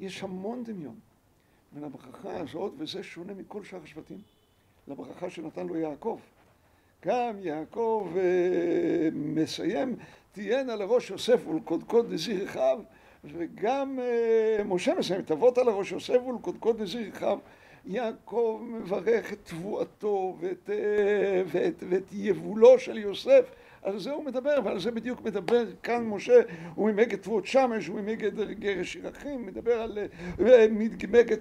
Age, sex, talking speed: 60-79, male, 125 wpm